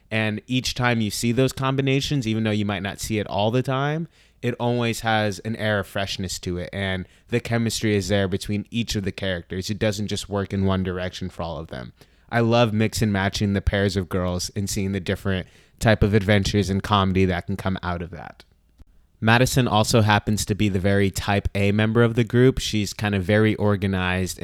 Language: English